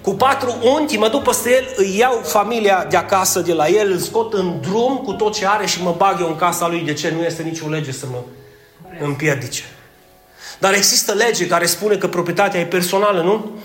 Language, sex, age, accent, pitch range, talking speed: Romanian, male, 30-49, native, 165-215 Hz, 220 wpm